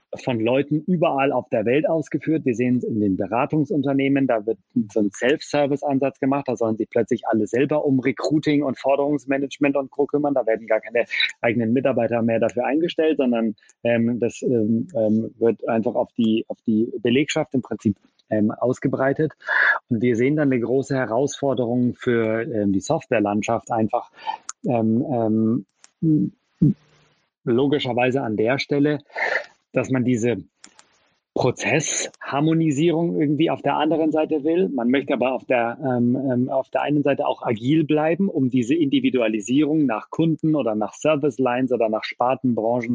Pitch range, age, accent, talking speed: 115-145 Hz, 30-49, German, 155 wpm